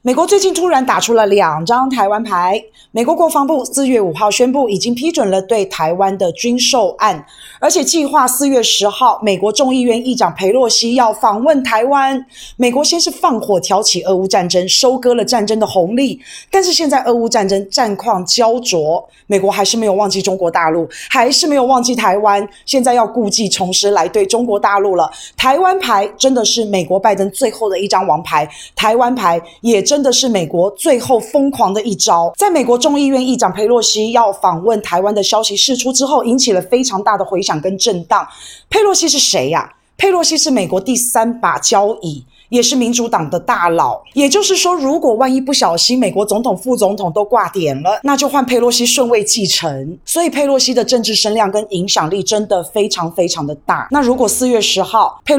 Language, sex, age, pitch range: Chinese, female, 20-39, 195-260 Hz